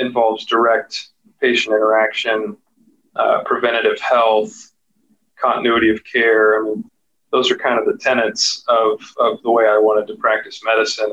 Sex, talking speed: male, 145 wpm